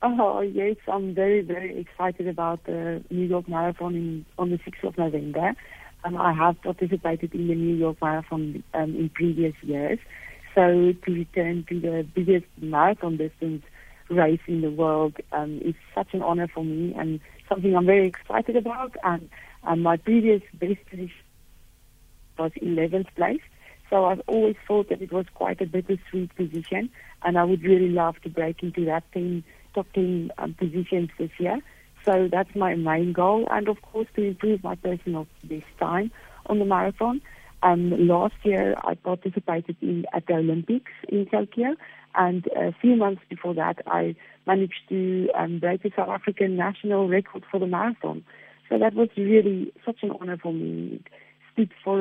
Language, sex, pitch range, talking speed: English, female, 170-195 Hz, 170 wpm